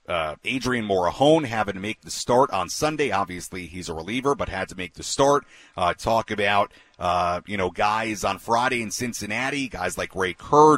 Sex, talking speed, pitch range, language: male, 195 wpm, 100-135 Hz, English